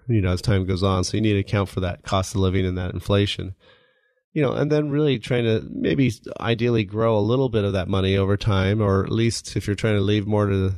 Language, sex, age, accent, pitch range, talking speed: English, male, 30-49, American, 100-115 Hz, 260 wpm